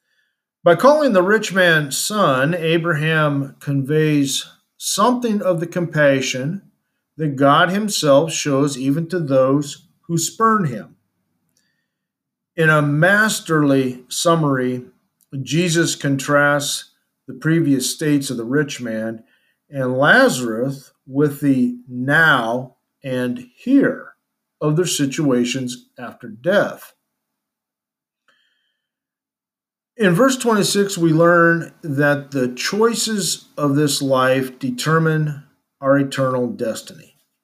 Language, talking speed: English, 100 wpm